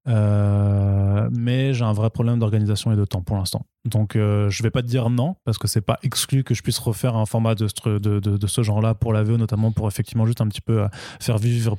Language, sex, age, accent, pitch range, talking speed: French, male, 20-39, French, 105-125 Hz, 260 wpm